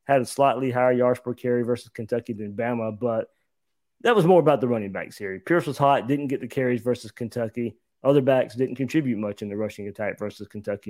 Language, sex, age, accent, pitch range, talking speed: English, male, 20-39, American, 115-135 Hz, 220 wpm